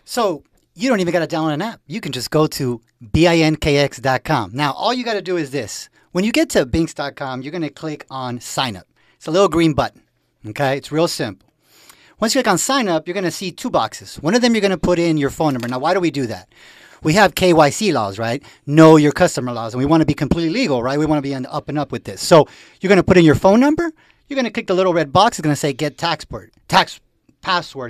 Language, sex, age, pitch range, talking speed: English, male, 40-59, 140-195 Hz, 270 wpm